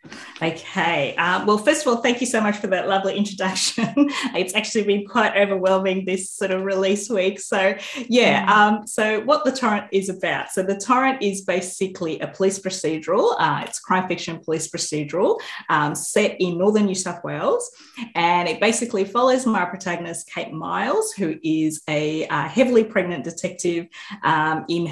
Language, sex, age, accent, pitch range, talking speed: English, female, 30-49, Australian, 160-205 Hz, 170 wpm